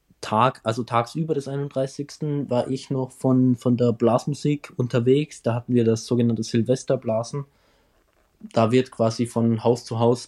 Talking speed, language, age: 150 wpm, German, 20-39